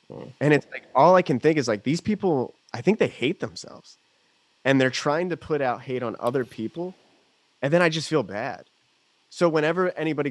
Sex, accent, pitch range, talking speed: male, American, 100-135 Hz, 205 wpm